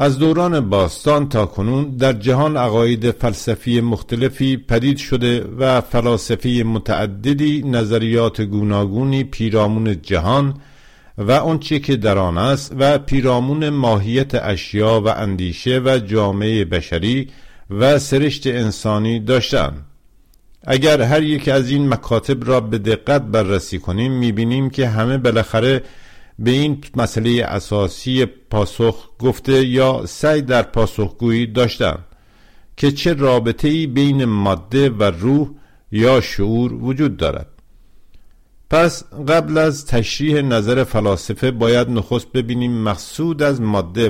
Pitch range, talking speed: 110-135 Hz, 120 wpm